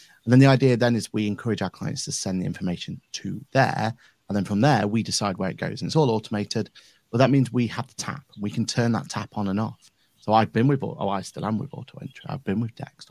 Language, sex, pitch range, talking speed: English, male, 105-130 Hz, 275 wpm